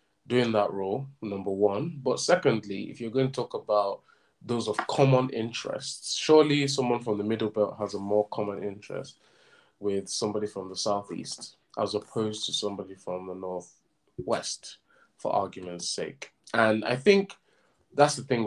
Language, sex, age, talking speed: English, male, 20-39, 160 wpm